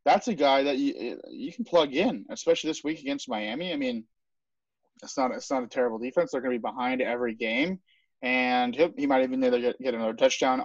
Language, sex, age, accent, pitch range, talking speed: English, male, 30-49, American, 125-185 Hz, 220 wpm